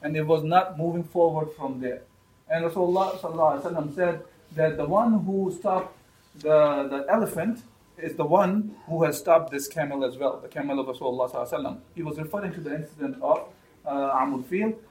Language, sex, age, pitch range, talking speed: English, male, 40-59, 145-185 Hz, 180 wpm